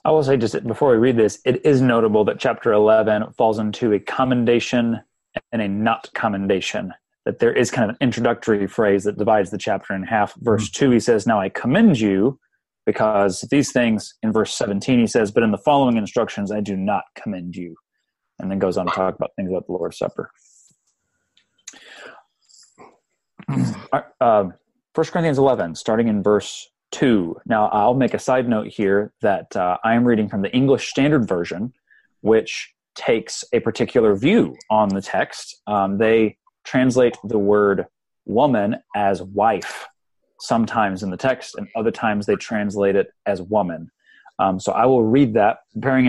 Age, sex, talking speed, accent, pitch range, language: 30-49, male, 175 wpm, American, 100-120 Hz, English